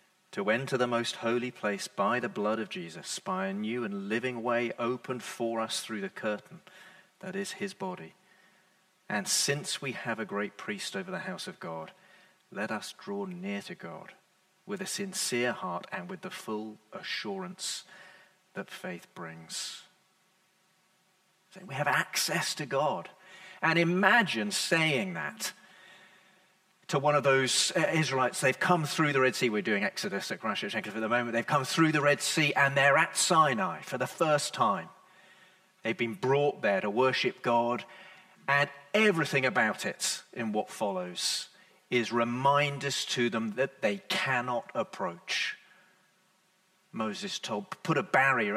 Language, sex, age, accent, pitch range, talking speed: English, male, 40-59, British, 135-185 Hz, 155 wpm